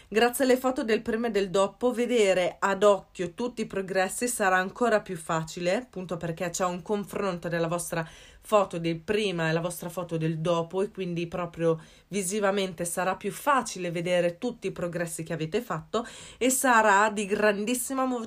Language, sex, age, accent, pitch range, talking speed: Italian, female, 30-49, native, 175-225 Hz, 170 wpm